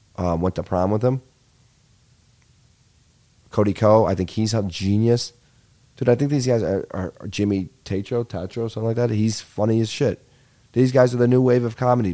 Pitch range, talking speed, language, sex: 105-125 Hz, 195 wpm, English, male